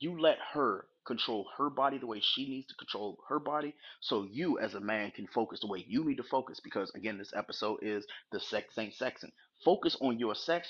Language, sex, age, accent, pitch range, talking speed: English, male, 30-49, American, 115-150 Hz, 225 wpm